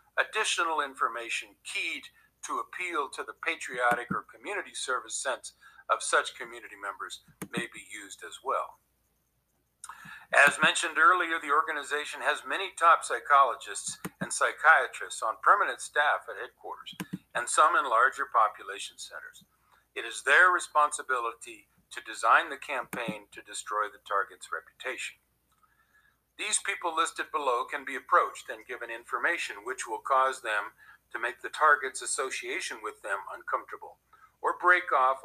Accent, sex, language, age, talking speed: American, male, English, 50-69, 140 wpm